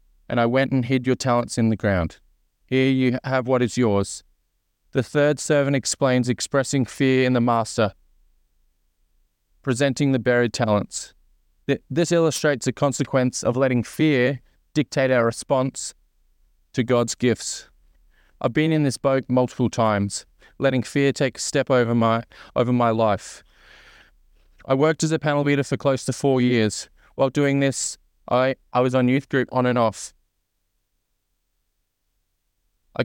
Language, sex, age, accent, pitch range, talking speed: English, male, 20-39, Australian, 95-135 Hz, 150 wpm